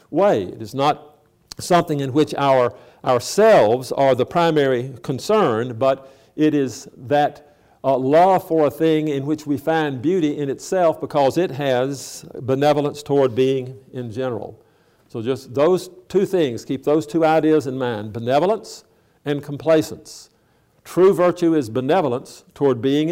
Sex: male